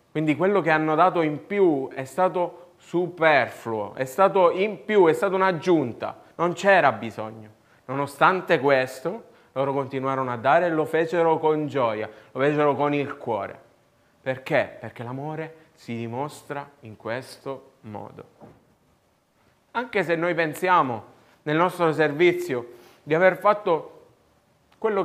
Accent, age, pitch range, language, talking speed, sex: native, 30-49, 120-170 Hz, Italian, 130 wpm, male